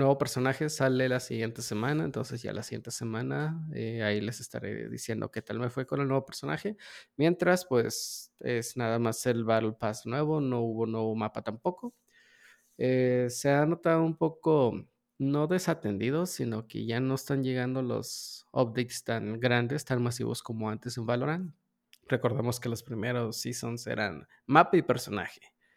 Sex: male